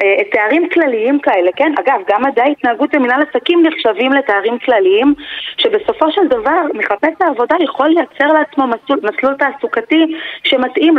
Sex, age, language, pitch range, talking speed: female, 20-39, Hebrew, 220-295 Hz, 135 wpm